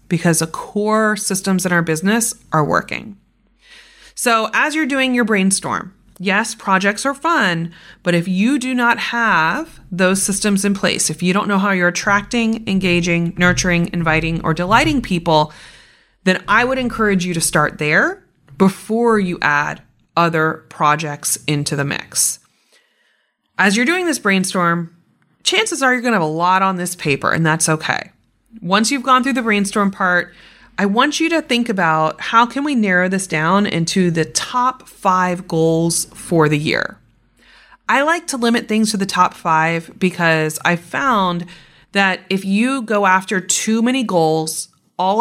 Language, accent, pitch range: English, American, 165-225 Hz